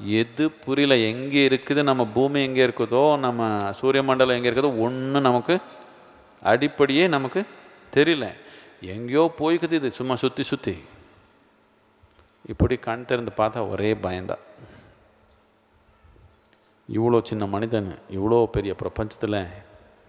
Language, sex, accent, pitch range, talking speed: Tamil, male, native, 105-140 Hz, 110 wpm